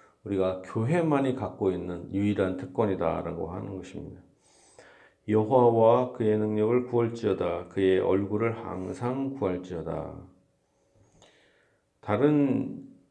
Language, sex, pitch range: Korean, male, 95-125 Hz